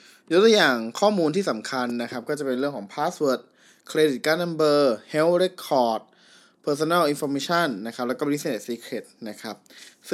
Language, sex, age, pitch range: Thai, male, 20-39, 120-150 Hz